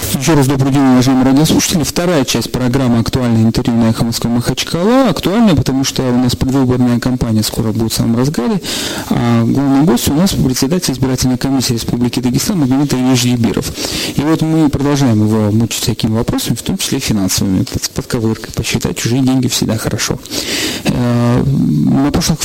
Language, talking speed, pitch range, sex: Russian, 160 wpm, 120-145 Hz, male